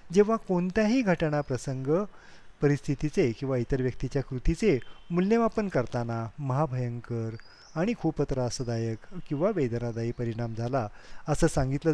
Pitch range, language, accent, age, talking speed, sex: 120-175 Hz, Marathi, native, 30-49, 100 wpm, male